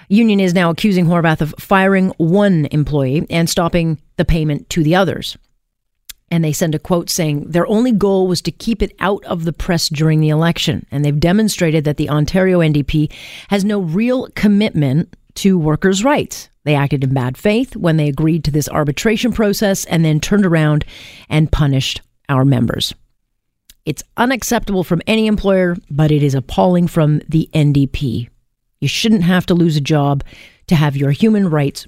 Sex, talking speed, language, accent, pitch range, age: female, 175 wpm, English, American, 150-200 Hz, 40-59